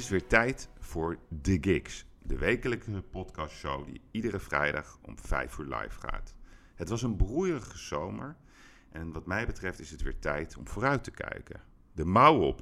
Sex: male